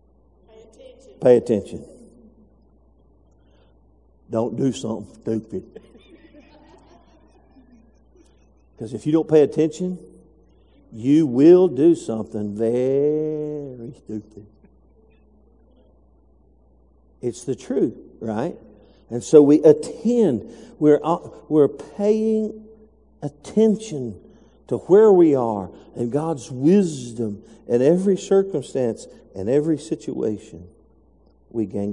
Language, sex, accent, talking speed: English, male, American, 85 wpm